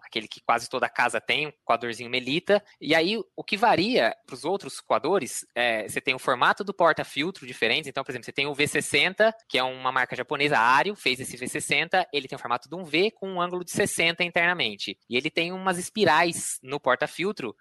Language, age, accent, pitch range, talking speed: Portuguese, 20-39, Brazilian, 140-180 Hz, 215 wpm